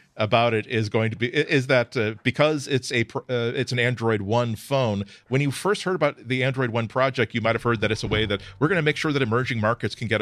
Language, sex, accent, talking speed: English, male, American, 270 wpm